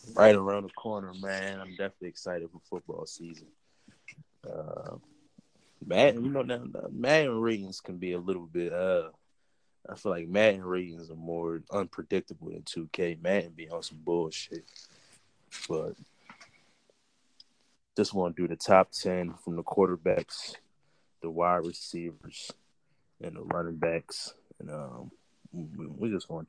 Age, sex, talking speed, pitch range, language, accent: 20-39, male, 140 wpm, 85-95 Hz, English, American